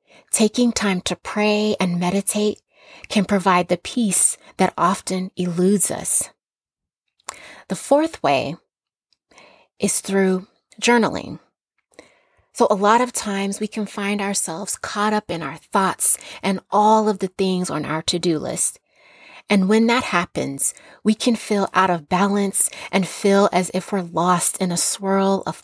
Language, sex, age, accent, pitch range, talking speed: English, female, 30-49, American, 180-210 Hz, 145 wpm